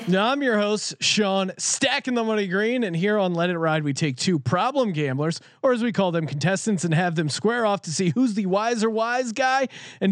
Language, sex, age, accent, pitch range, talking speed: English, male, 30-49, American, 170-230 Hz, 230 wpm